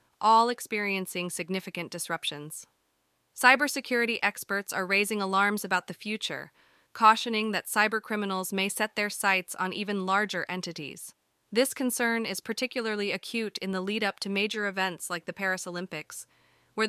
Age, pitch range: 30-49, 170-220 Hz